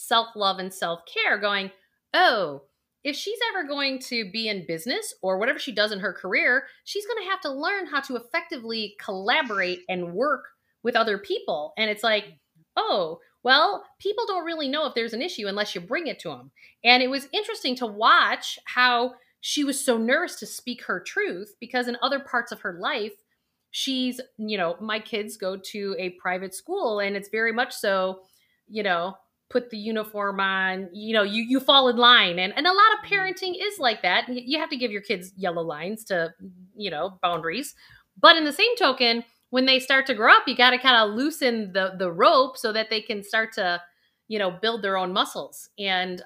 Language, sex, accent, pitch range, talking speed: English, female, American, 195-260 Hz, 205 wpm